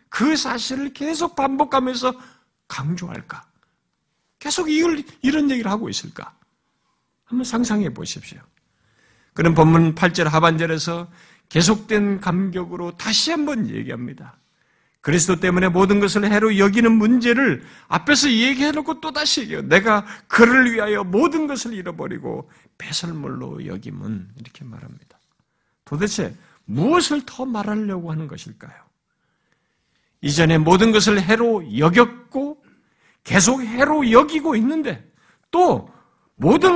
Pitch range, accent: 180-265 Hz, native